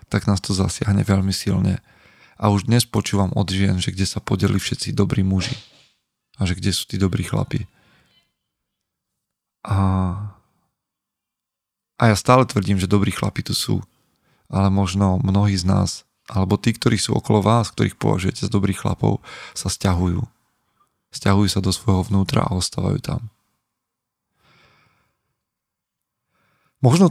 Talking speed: 140 wpm